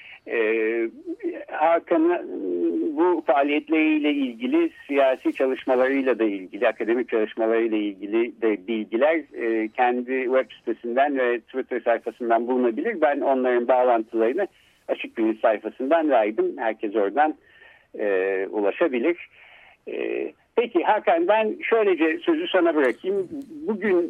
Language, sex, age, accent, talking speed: Turkish, male, 60-79, native, 110 wpm